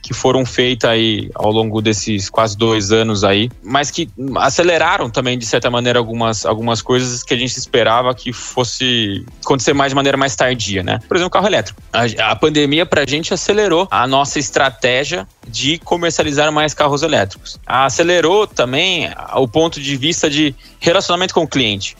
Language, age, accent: Portuguese, 20-39, Brazilian